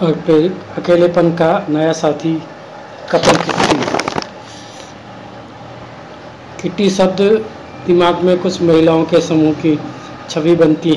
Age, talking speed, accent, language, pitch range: 50-69, 100 wpm, native, Hindi, 150-170 Hz